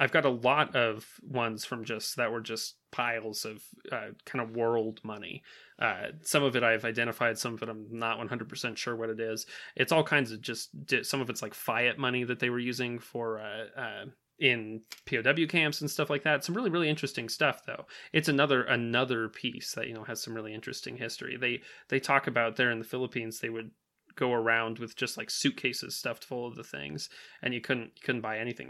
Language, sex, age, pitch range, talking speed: English, male, 20-39, 115-130 Hz, 220 wpm